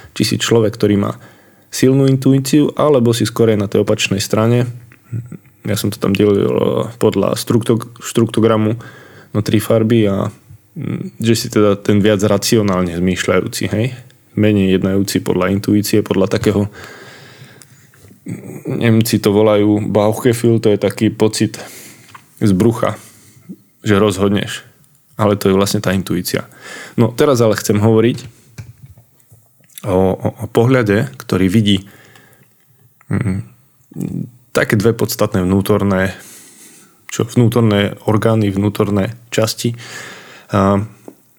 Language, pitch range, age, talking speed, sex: Slovak, 100-115 Hz, 20-39, 115 wpm, male